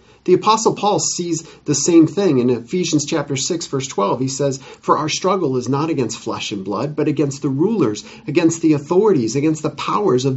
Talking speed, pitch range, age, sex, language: 205 wpm, 115-160 Hz, 40-59, male, English